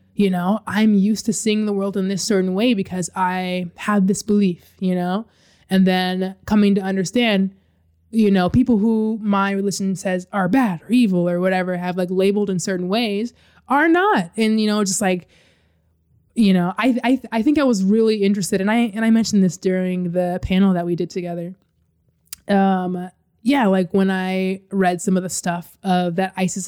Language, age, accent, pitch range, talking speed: English, 20-39, American, 180-205 Hz, 195 wpm